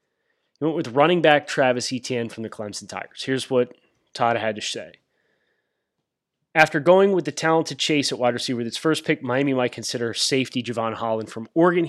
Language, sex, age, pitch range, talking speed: English, male, 30-49, 120-160 Hz, 185 wpm